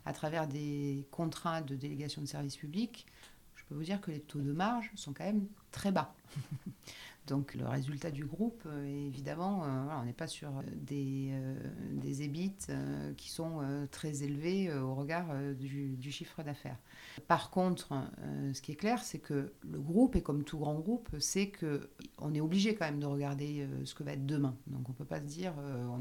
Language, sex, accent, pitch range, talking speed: French, female, French, 135-160 Hz, 190 wpm